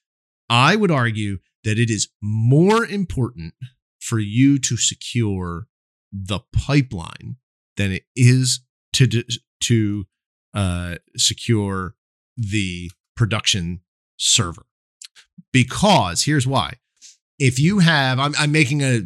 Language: English